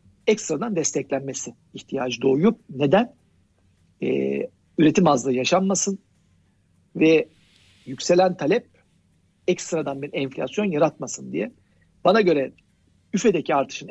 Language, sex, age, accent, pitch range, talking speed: Turkish, male, 60-79, native, 135-185 Hz, 90 wpm